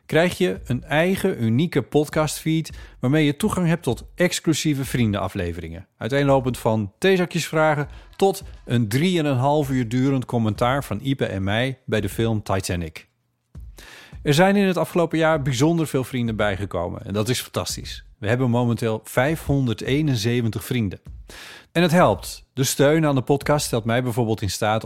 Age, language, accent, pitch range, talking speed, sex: 40-59, Dutch, Dutch, 110-160 Hz, 150 wpm, male